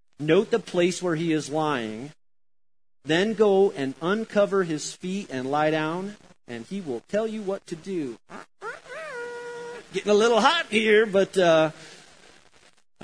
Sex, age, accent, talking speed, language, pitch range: male, 40-59, American, 145 wpm, English, 130-175 Hz